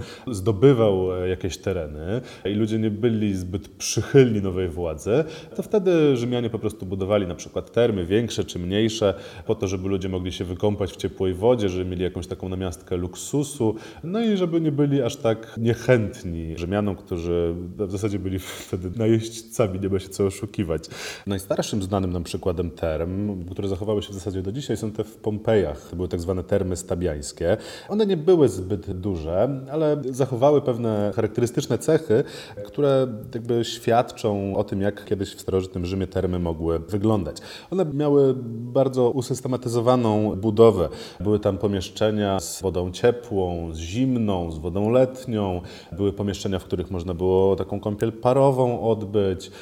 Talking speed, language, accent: 155 wpm, Polish, native